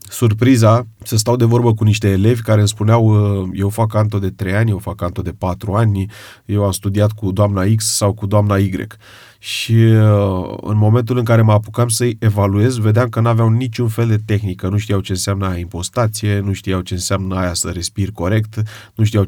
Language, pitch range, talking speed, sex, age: Romanian, 100-115 Hz, 200 wpm, male, 30-49